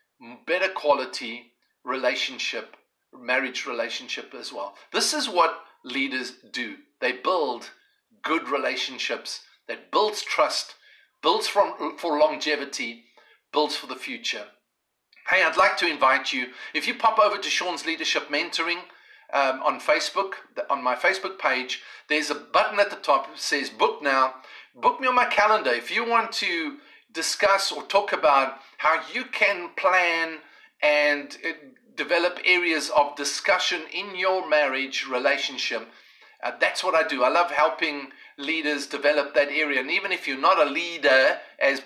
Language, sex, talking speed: English, male, 150 wpm